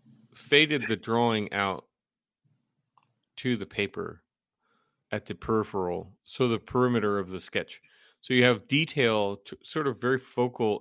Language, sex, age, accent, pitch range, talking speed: English, male, 40-59, American, 105-130 Hz, 135 wpm